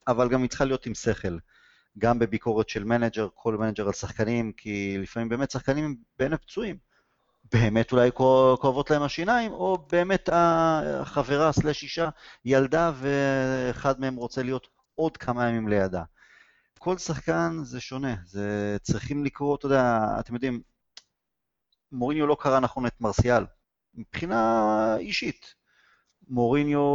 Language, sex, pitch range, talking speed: Hebrew, male, 110-150 Hz, 135 wpm